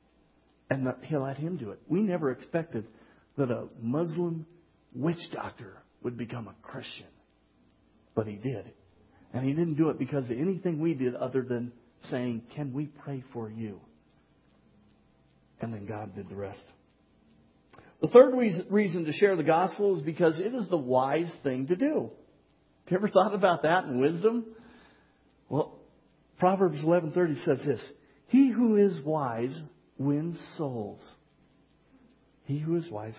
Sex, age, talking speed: male, 50-69, 155 wpm